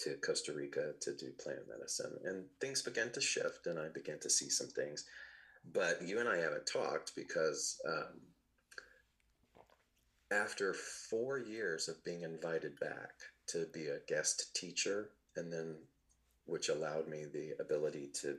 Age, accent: 30-49, American